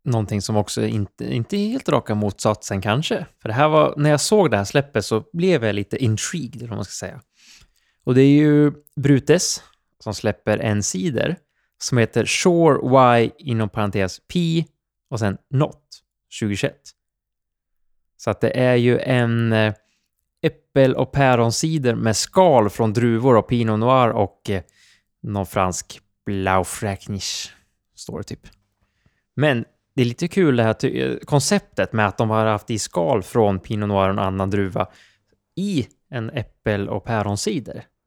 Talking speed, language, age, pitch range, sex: 160 wpm, Swedish, 20-39, 105-135 Hz, male